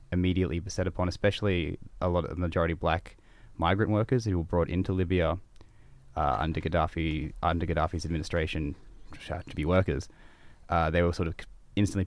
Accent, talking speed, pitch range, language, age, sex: Australian, 160 wpm, 85-105 Hz, English, 20-39, male